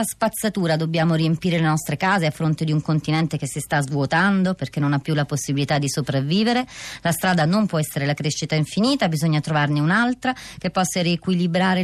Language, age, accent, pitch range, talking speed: Italian, 30-49, native, 155-205 Hz, 190 wpm